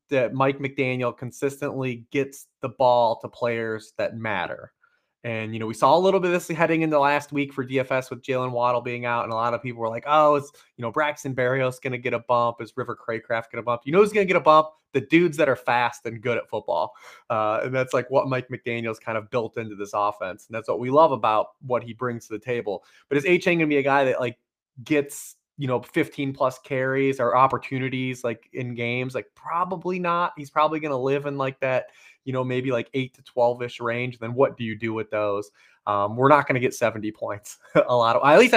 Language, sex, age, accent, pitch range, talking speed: English, male, 20-39, American, 120-140 Hz, 245 wpm